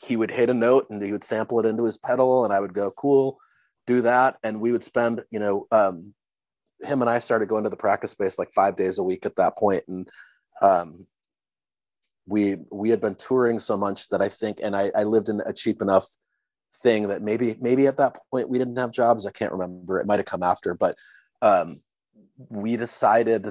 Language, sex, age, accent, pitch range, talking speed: English, male, 30-49, American, 100-120 Hz, 220 wpm